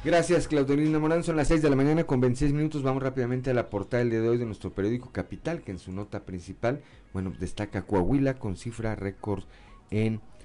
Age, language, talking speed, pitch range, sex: 40-59, Spanish, 215 wpm, 85-115 Hz, male